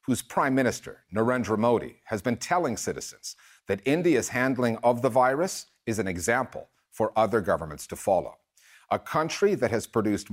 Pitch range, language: 105-130 Hz, English